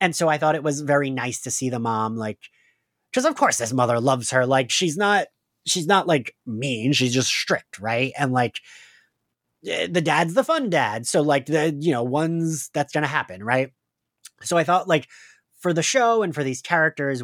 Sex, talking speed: male, 210 wpm